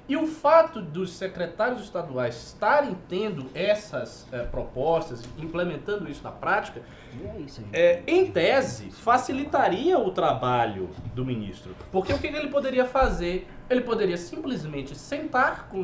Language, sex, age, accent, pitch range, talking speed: Portuguese, male, 20-39, Brazilian, 150-255 Hz, 130 wpm